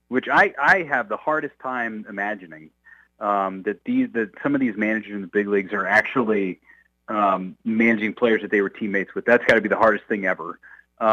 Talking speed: 210 wpm